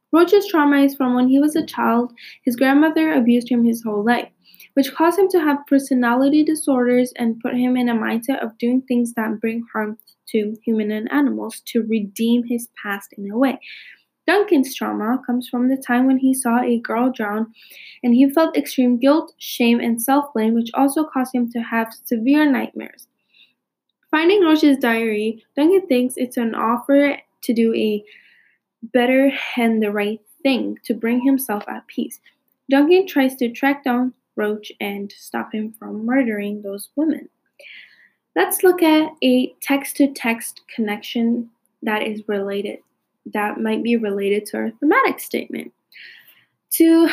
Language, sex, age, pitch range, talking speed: English, female, 10-29, 230-280 Hz, 160 wpm